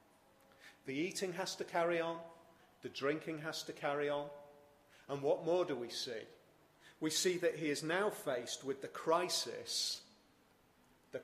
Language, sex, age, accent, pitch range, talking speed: English, male, 40-59, British, 145-190 Hz, 155 wpm